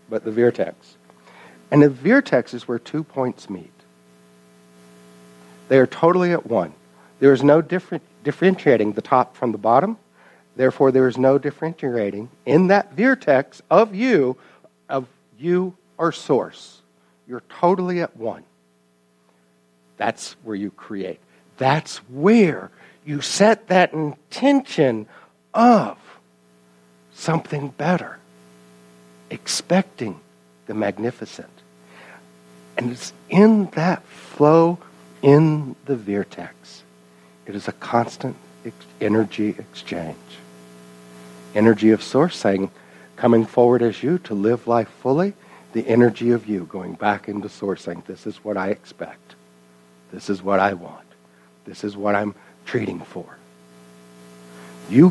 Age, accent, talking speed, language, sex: 60-79, American, 120 wpm, English, male